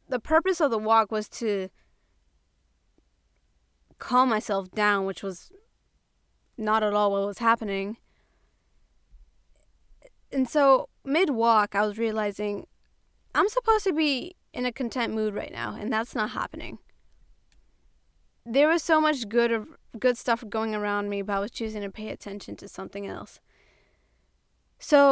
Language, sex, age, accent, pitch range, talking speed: English, female, 20-39, American, 200-250 Hz, 140 wpm